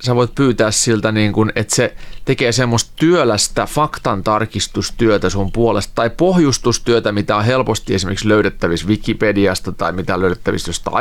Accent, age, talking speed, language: native, 30-49, 135 wpm, Finnish